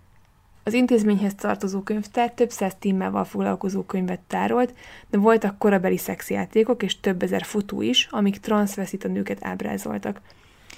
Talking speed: 140 wpm